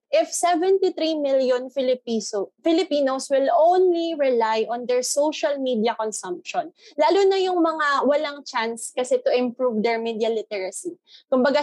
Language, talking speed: Filipino, 130 wpm